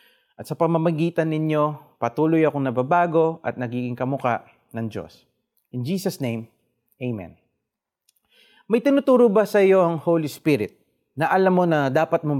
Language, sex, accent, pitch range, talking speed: Filipino, male, native, 130-195 Hz, 145 wpm